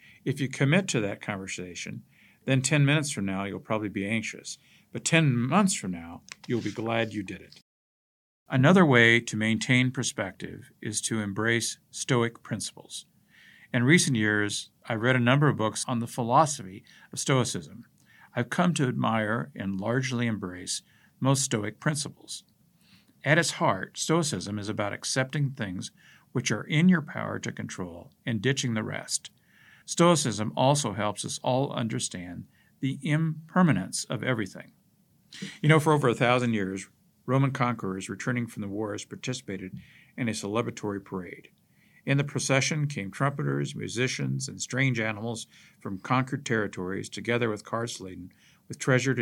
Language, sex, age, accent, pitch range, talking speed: English, male, 50-69, American, 105-135 Hz, 150 wpm